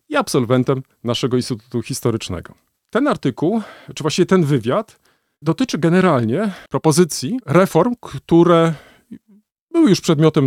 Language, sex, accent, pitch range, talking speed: Polish, male, native, 135-185 Hz, 110 wpm